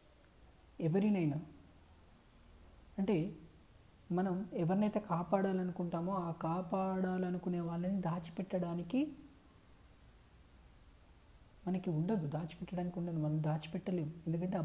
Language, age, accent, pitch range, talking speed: Telugu, 30-49, native, 145-185 Hz, 65 wpm